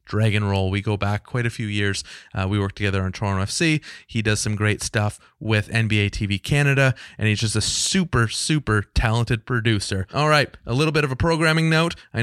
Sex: male